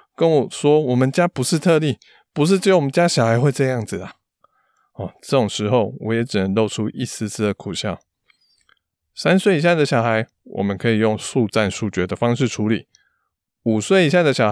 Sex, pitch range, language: male, 105-135 Hz, Chinese